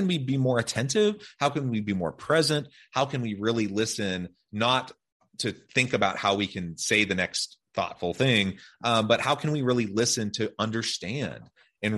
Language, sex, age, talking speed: English, male, 30-49, 185 wpm